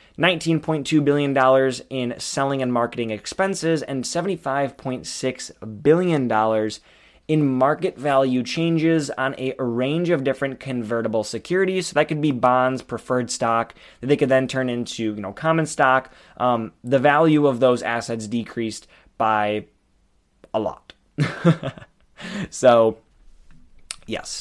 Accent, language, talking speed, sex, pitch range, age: American, English, 130 wpm, male, 120-155 Hz, 20-39